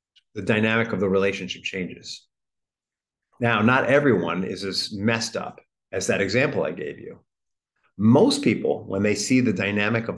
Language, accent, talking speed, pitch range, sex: English, American, 160 wpm, 95-115 Hz, male